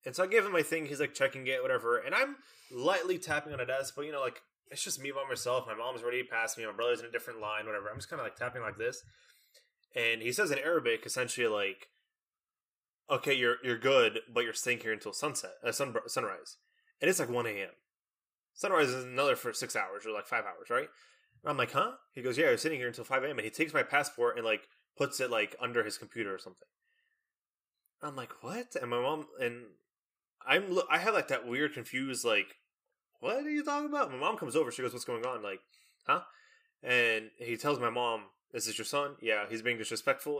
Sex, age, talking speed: male, 20-39, 235 wpm